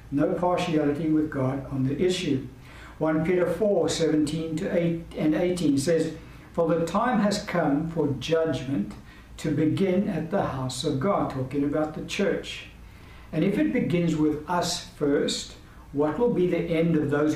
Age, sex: 60-79, male